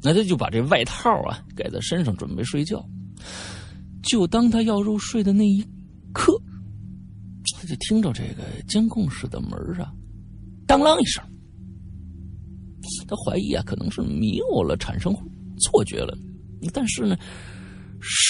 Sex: male